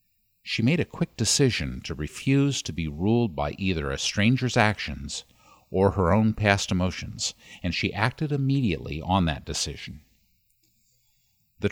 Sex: male